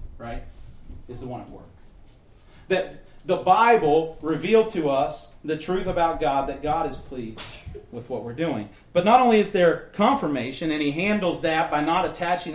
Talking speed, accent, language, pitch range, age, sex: 175 wpm, American, English, 135-175 Hz, 40-59, male